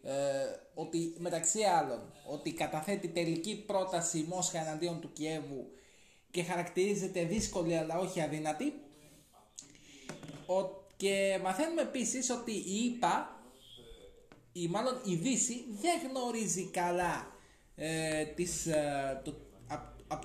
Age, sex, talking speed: 20-39, male, 115 wpm